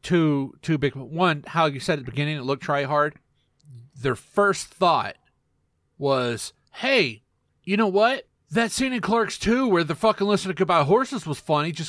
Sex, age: male, 30-49